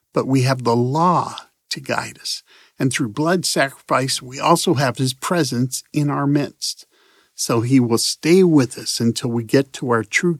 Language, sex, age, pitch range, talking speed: English, male, 50-69, 120-155 Hz, 185 wpm